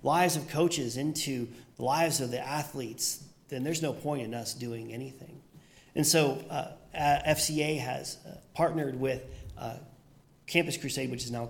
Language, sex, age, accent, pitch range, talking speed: English, male, 40-59, American, 125-160 Hz, 155 wpm